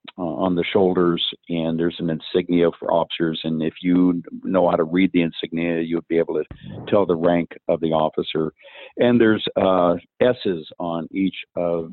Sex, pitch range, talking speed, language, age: male, 85-95 Hz, 185 wpm, English, 50-69